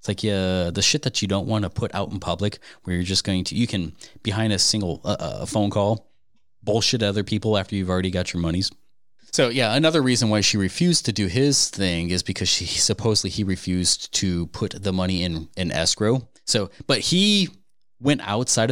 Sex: male